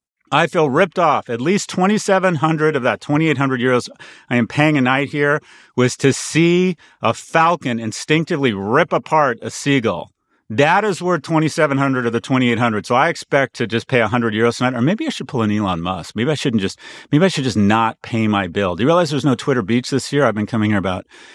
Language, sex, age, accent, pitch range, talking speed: English, male, 40-59, American, 120-155 Hz, 215 wpm